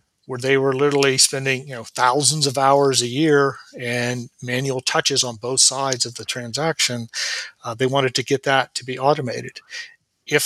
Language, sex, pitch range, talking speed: English, male, 125-145 Hz, 180 wpm